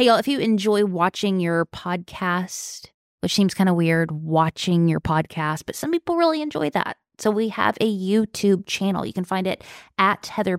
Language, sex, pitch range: English, female, 185-230 Hz